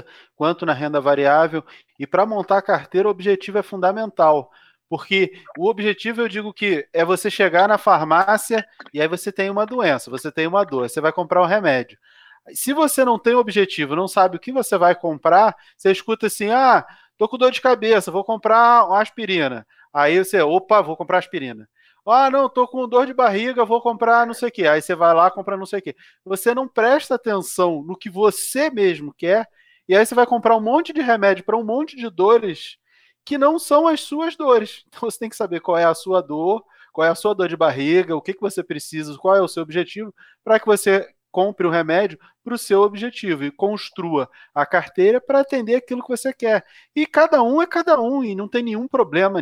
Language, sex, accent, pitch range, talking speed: Portuguese, male, Brazilian, 175-235 Hz, 220 wpm